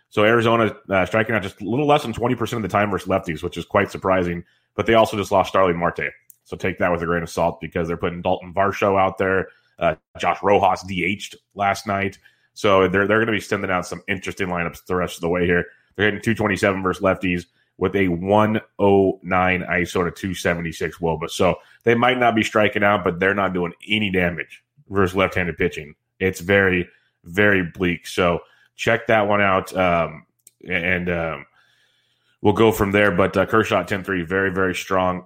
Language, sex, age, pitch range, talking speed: English, male, 30-49, 90-105 Hz, 200 wpm